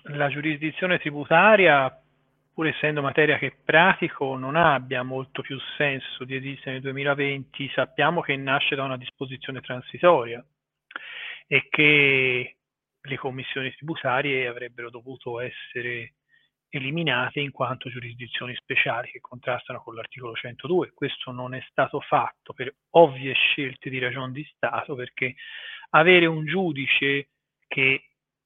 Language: Italian